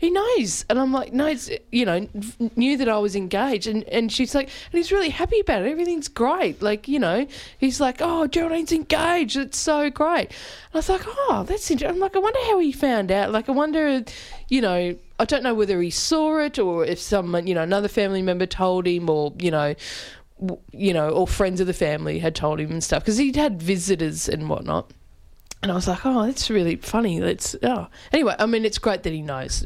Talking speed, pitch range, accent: 225 wpm, 165-250 Hz, Australian